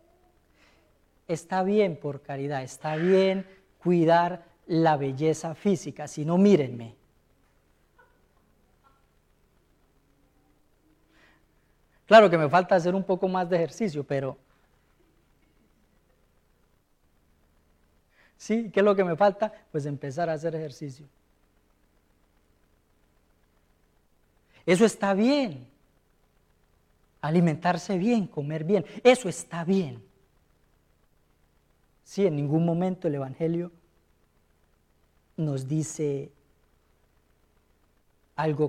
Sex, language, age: female, English, 40-59